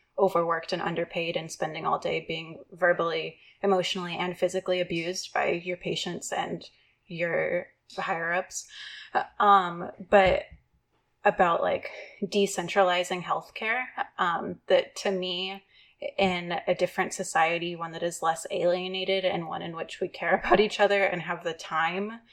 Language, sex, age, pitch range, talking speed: English, female, 20-39, 175-200 Hz, 135 wpm